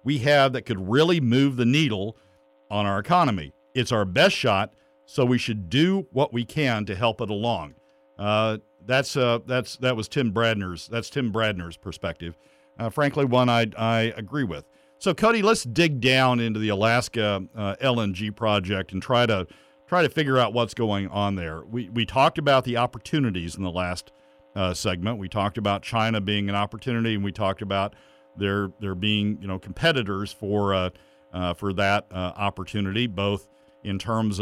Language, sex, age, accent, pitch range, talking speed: English, male, 50-69, American, 95-120 Hz, 180 wpm